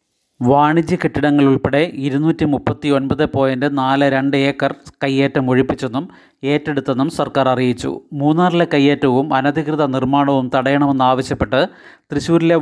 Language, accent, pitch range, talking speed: Malayalam, native, 135-150 Hz, 90 wpm